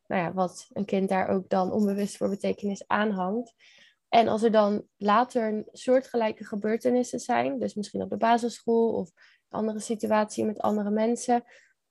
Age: 20-39